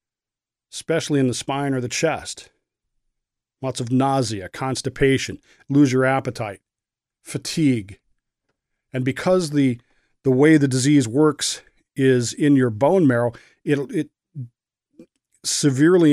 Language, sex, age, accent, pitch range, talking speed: English, male, 40-59, American, 120-140 Hz, 115 wpm